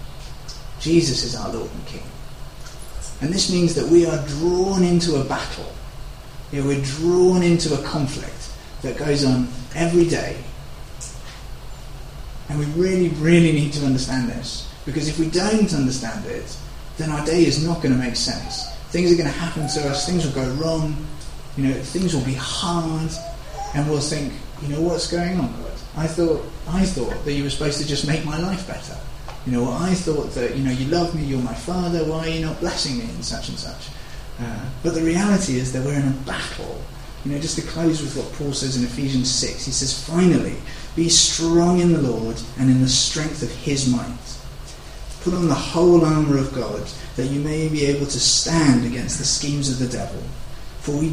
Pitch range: 130-165 Hz